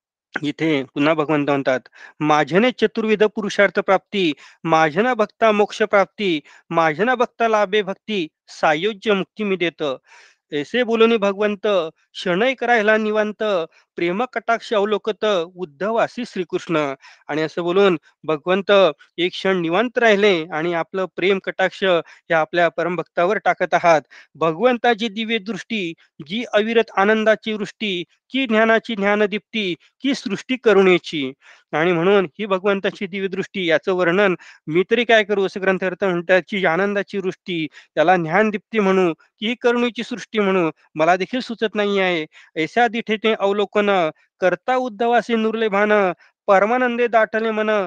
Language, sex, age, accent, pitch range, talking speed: Marathi, male, 40-59, native, 175-220 Hz, 105 wpm